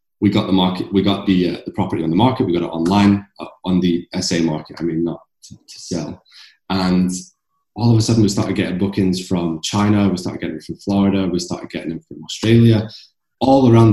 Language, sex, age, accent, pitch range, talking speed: English, male, 20-39, British, 95-115 Hz, 230 wpm